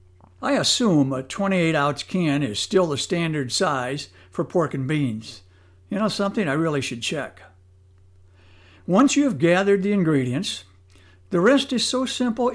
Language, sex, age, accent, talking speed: English, male, 60-79, American, 160 wpm